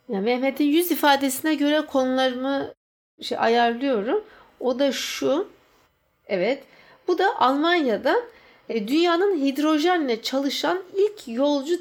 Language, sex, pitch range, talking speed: English, female, 235-330 Hz, 95 wpm